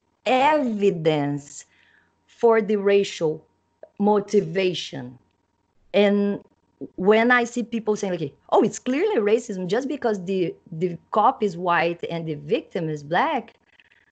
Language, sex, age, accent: English, female, 30-49, Brazilian